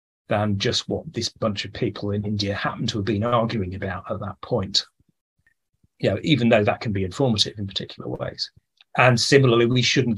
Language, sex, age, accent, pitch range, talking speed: English, male, 30-49, British, 100-115 Hz, 195 wpm